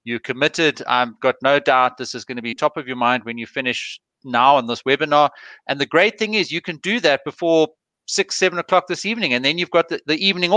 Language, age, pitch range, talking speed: English, 30-49, 125-160 Hz, 250 wpm